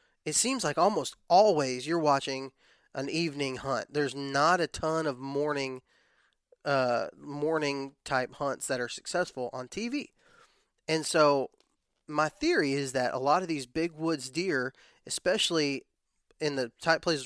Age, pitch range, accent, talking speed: 20-39, 130-150 Hz, American, 150 wpm